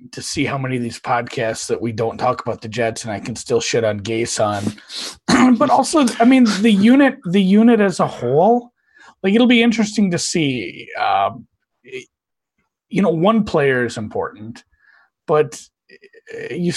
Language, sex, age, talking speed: English, male, 30-49, 175 wpm